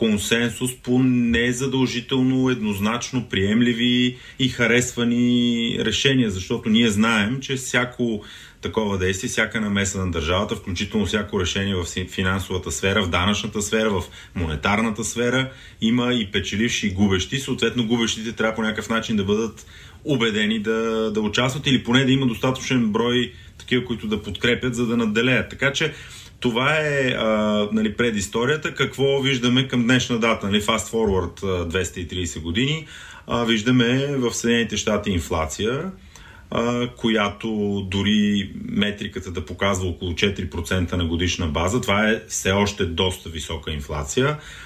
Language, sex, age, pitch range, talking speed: Bulgarian, male, 30-49, 100-120 Hz, 135 wpm